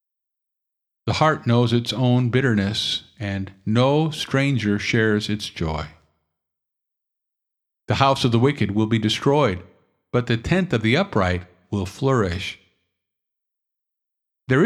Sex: male